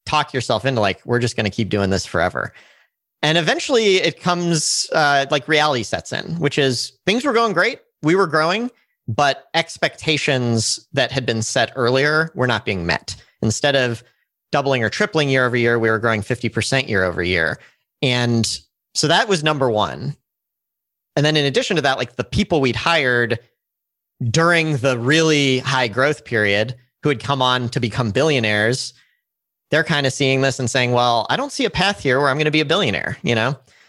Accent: American